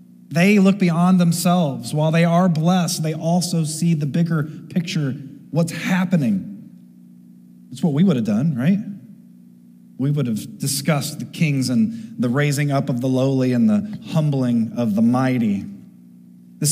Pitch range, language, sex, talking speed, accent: 135-185 Hz, English, male, 155 wpm, American